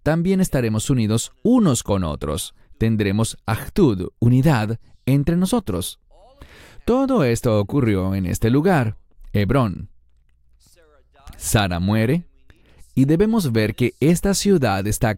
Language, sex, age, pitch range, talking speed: English, male, 30-49, 100-155 Hz, 105 wpm